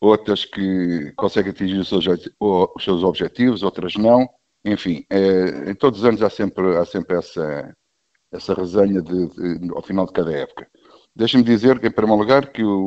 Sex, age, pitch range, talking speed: male, 60-79, 90-100 Hz, 170 wpm